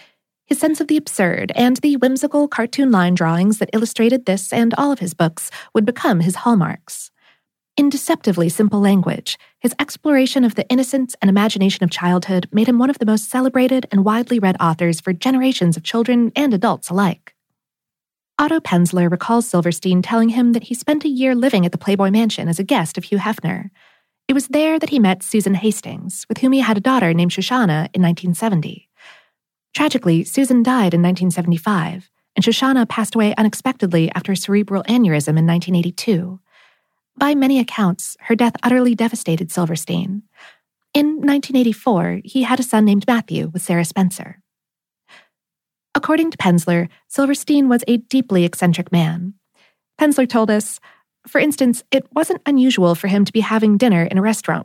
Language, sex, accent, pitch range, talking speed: English, female, American, 185-260 Hz, 170 wpm